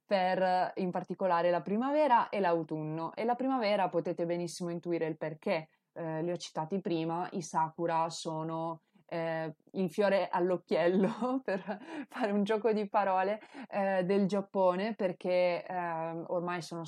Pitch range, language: 170-195 Hz, Italian